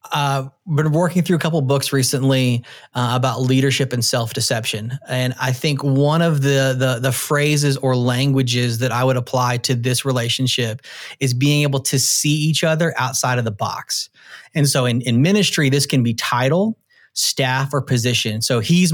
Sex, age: male, 30-49